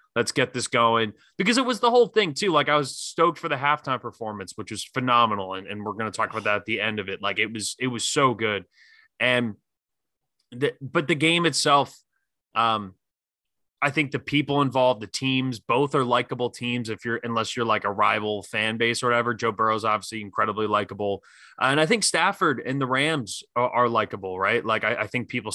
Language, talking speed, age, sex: English, 215 wpm, 20-39, male